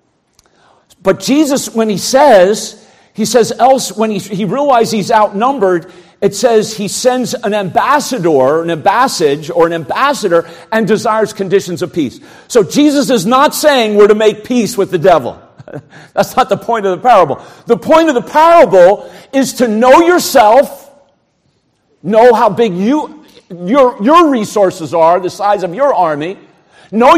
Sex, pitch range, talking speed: male, 180-255 Hz, 160 wpm